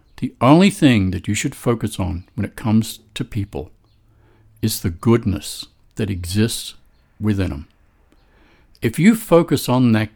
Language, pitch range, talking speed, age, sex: English, 95-130 Hz, 150 wpm, 60-79, male